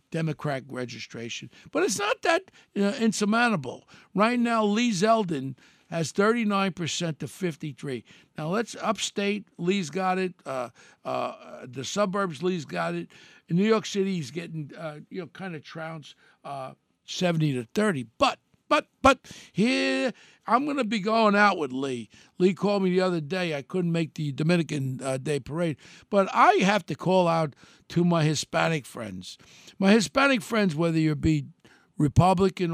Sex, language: male, English